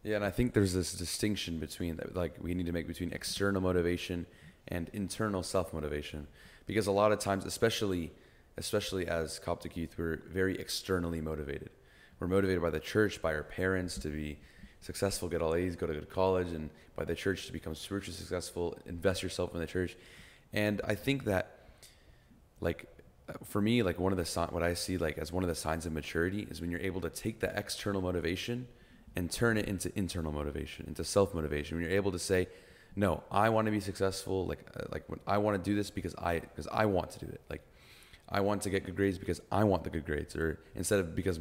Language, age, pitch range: English, 30-49, 80-100 Hz